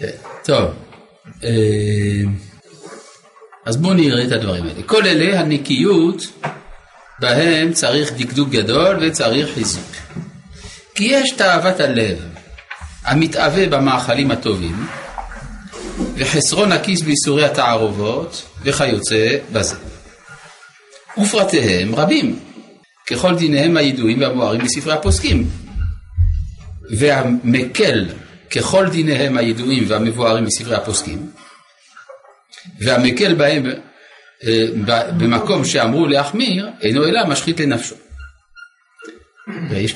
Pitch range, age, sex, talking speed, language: 115-165 Hz, 50-69, male, 80 wpm, Hebrew